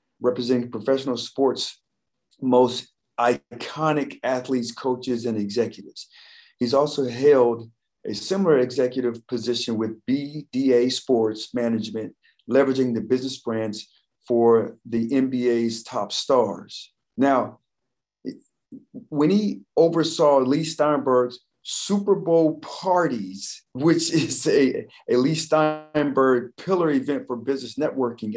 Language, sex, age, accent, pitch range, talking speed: English, male, 40-59, American, 120-155 Hz, 105 wpm